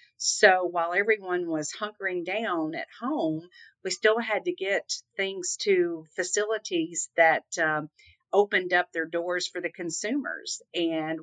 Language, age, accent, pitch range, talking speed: English, 50-69, American, 160-205 Hz, 140 wpm